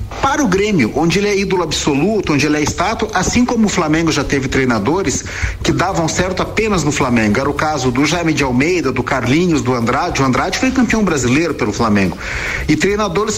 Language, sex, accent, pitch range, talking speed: Portuguese, male, Brazilian, 140-195 Hz, 200 wpm